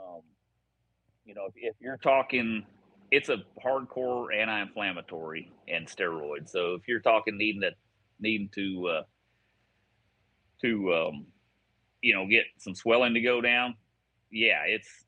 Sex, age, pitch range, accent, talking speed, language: male, 30-49, 100-115 Hz, American, 135 wpm, English